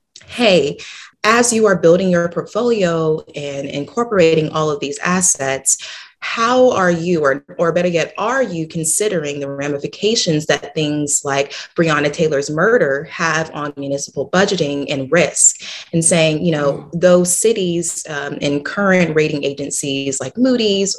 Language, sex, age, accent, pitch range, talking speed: English, female, 30-49, American, 140-175 Hz, 145 wpm